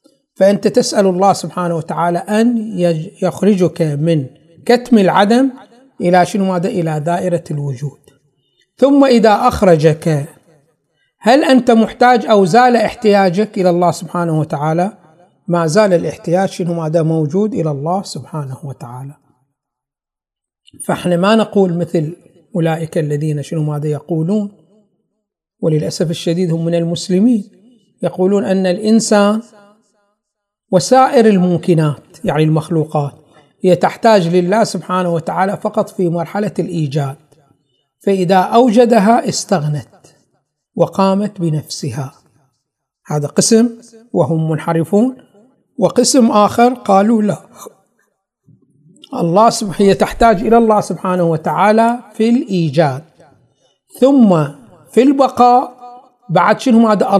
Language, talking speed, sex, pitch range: Arabic, 100 wpm, male, 160-215 Hz